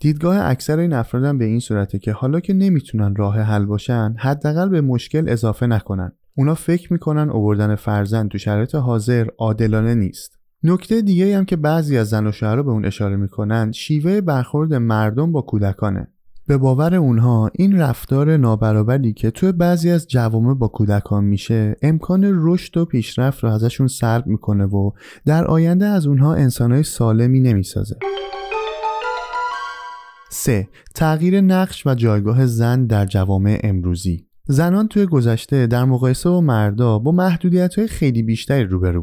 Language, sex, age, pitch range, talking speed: Persian, male, 20-39, 110-165 Hz, 155 wpm